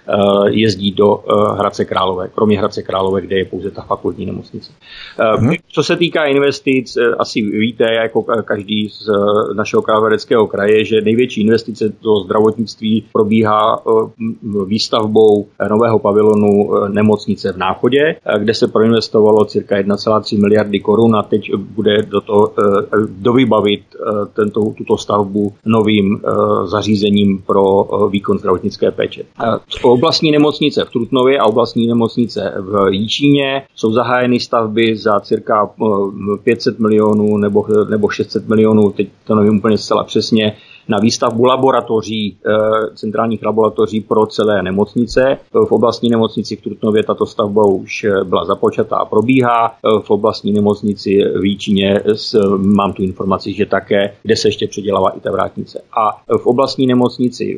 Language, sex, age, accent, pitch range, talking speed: Czech, male, 40-59, native, 100-115 Hz, 130 wpm